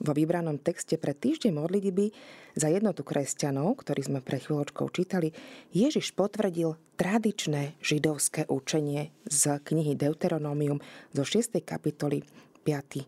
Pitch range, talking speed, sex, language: 145-195 Hz, 125 wpm, female, Slovak